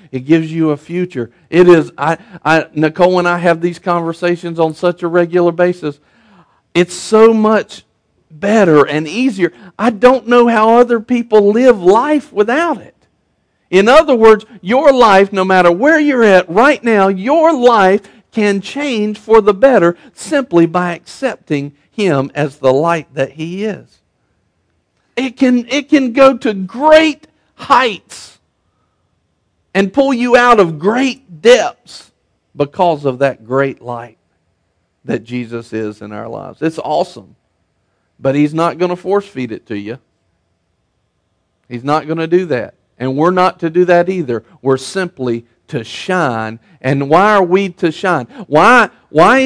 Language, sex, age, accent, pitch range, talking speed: English, male, 50-69, American, 135-210 Hz, 155 wpm